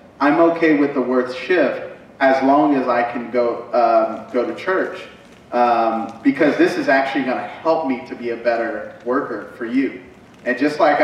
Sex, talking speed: male, 190 wpm